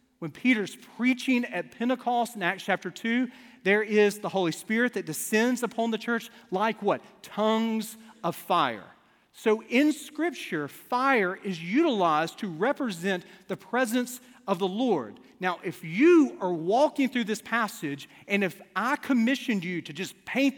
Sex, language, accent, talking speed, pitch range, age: male, English, American, 155 wpm, 185-245 Hz, 40-59